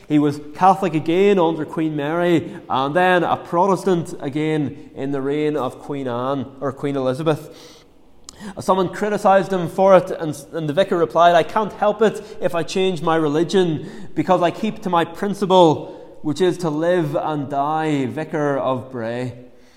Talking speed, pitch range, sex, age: 165 wpm, 145-175 Hz, male, 20-39